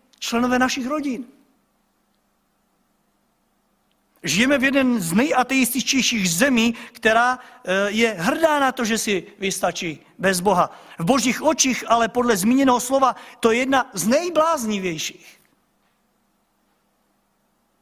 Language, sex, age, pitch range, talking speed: Czech, male, 50-69, 200-255 Hz, 105 wpm